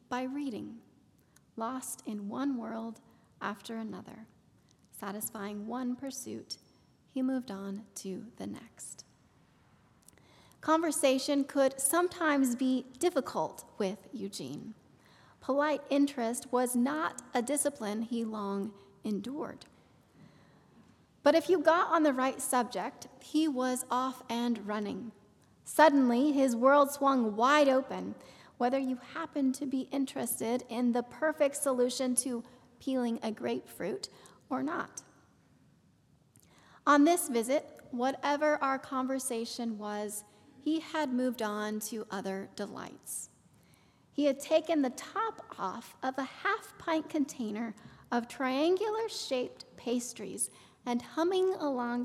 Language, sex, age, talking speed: English, female, 30-49, 115 wpm